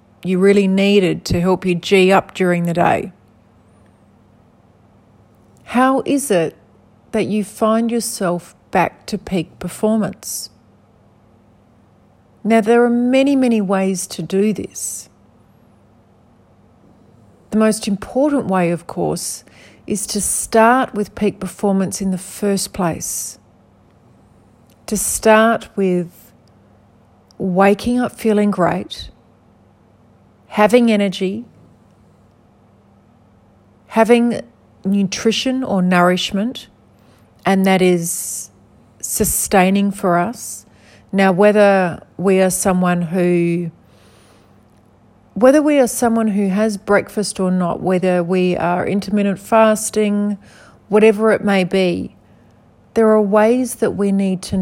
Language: English